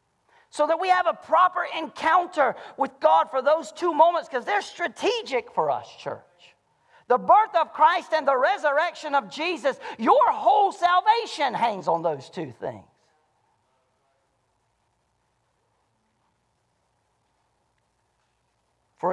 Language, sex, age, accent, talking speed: English, male, 40-59, American, 115 wpm